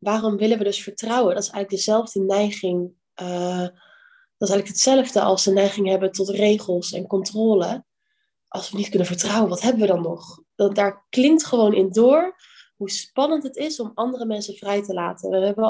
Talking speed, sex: 195 wpm, female